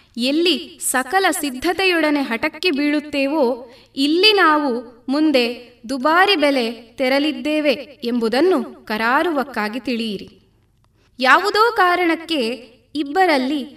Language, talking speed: Kannada, 75 wpm